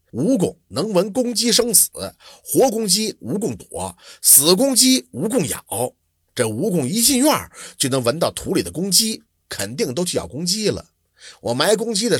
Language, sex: Chinese, male